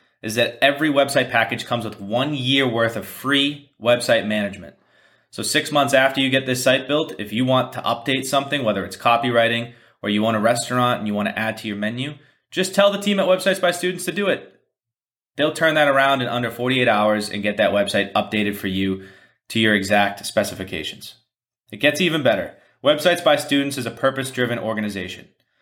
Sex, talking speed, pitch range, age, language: male, 200 wpm, 105-135 Hz, 20-39, English